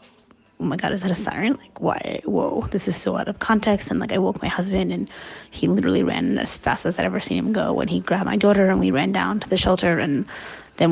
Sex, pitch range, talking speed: female, 155-210 Hz, 265 wpm